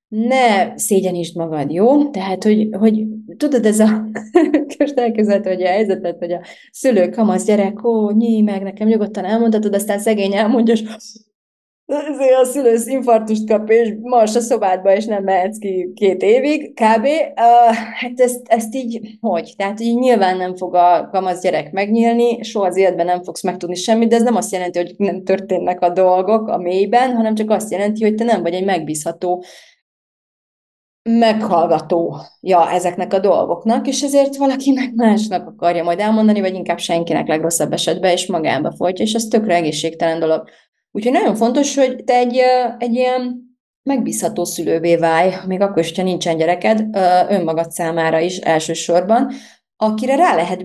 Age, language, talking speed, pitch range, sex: 30-49, Hungarian, 160 wpm, 180-235 Hz, female